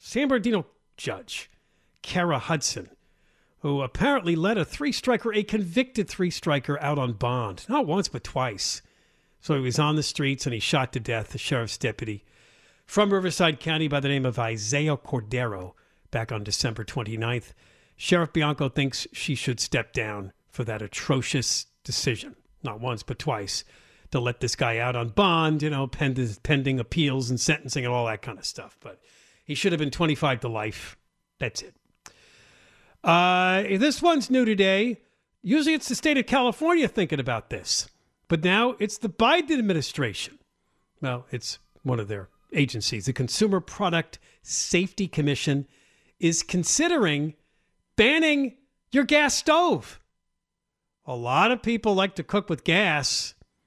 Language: English